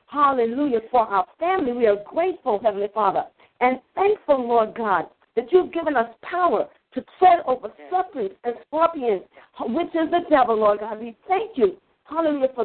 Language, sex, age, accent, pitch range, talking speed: English, female, 50-69, American, 245-330 Hz, 165 wpm